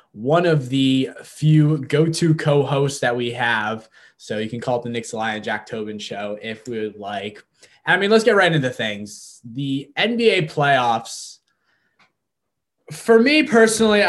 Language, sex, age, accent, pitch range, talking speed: English, male, 10-29, American, 115-155 Hz, 160 wpm